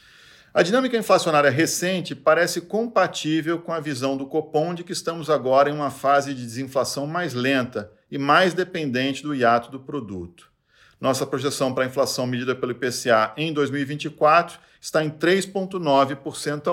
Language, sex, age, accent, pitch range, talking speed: Portuguese, male, 50-69, Brazilian, 135-170 Hz, 150 wpm